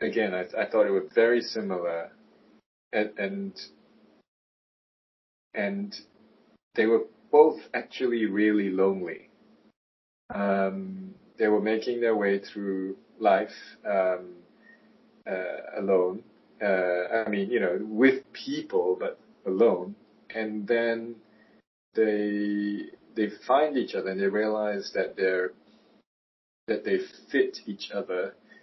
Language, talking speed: English, 115 wpm